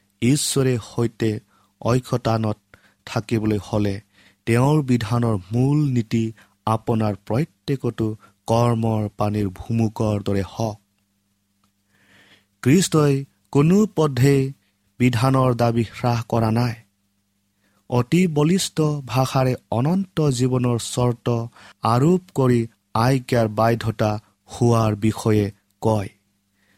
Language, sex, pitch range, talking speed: English, male, 105-130 Hz, 85 wpm